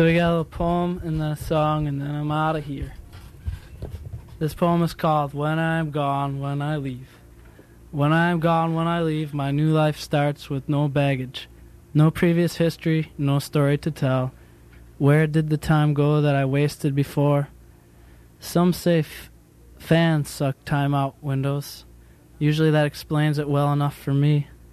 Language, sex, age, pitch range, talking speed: English, male, 20-39, 135-155 Hz, 175 wpm